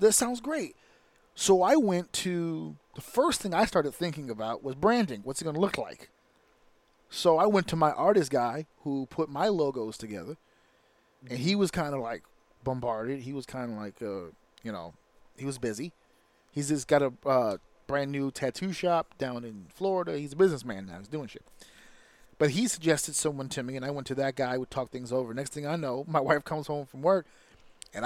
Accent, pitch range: American, 135-170 Hz